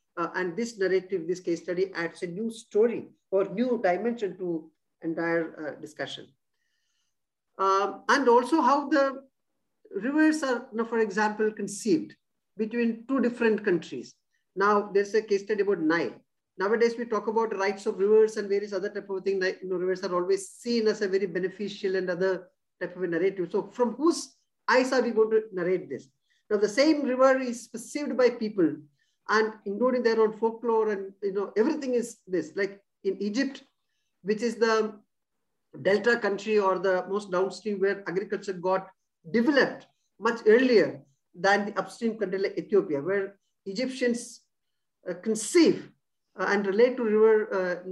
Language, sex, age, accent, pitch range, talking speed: English, male, 50-69, Indian, 190-235 Hz, 160 wpm